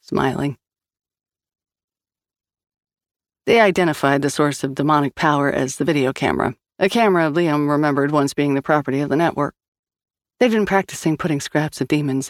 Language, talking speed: English, 150 wpm